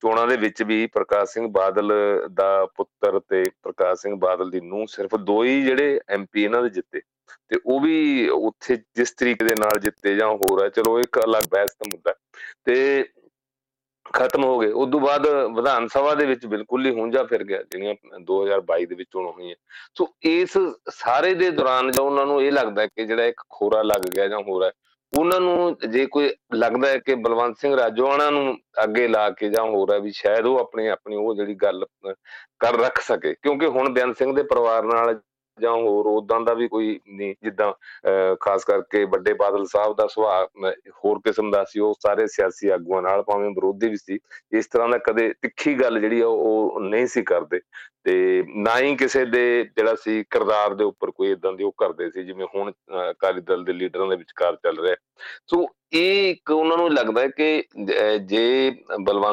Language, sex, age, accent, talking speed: English, male, 40-59, Indian, 90 wpm